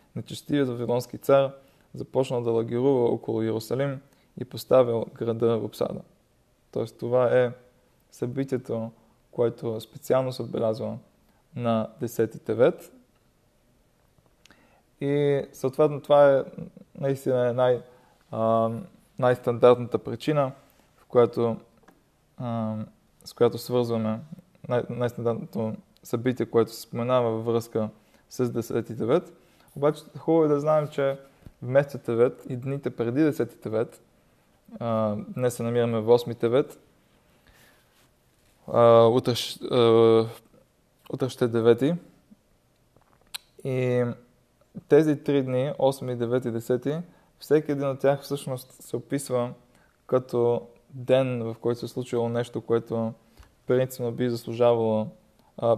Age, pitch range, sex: 20-39, 115-140 Hz, male